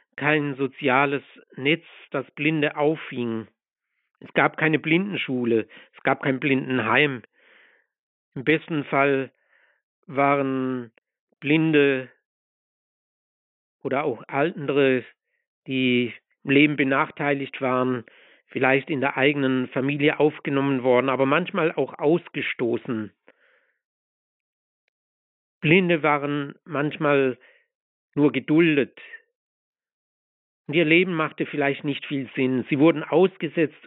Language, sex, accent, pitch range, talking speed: English, male, German, 130-155 Hz, 95 wpm